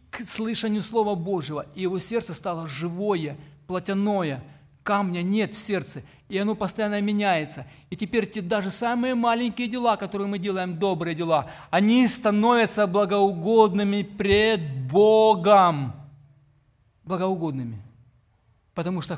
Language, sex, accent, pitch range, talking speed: Ukrainian, male, native, 145-200 Hz, 120 wpm